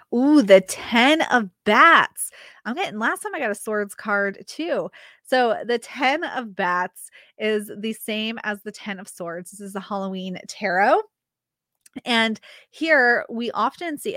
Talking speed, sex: 160 wpm, female